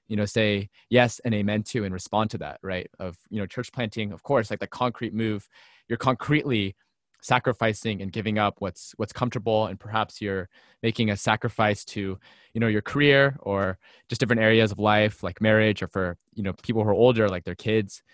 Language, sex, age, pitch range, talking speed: English, male, 20-39, 100-120 Hz, 210 wpm